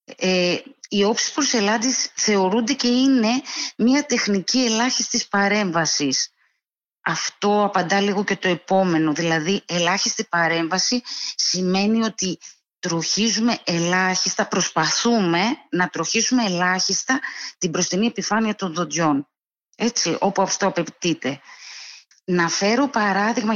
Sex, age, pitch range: female, 30-49, 170-235 Hz